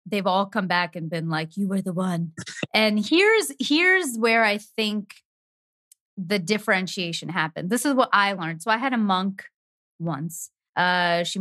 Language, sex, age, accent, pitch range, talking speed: English, female, 30-49, American, 190-245 Hz, 175 wpm